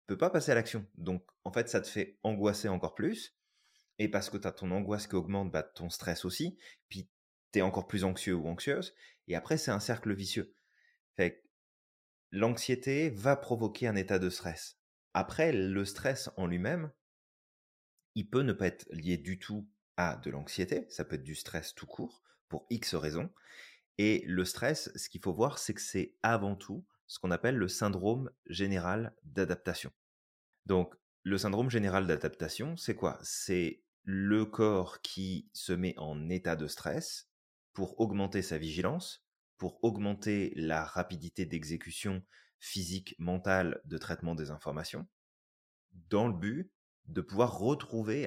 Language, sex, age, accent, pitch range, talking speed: French, male, 30-49, French, 90-110 Hz, 165 wpm